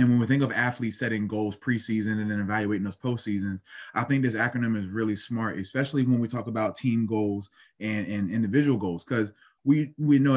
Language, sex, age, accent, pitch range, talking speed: English, male, 20-39, American, 100-120 Hz, 215 wpm